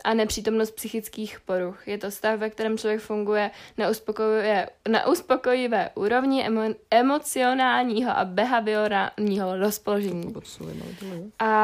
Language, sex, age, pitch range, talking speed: Czech, female, 20-39, 200-220 Hz, 115 wpm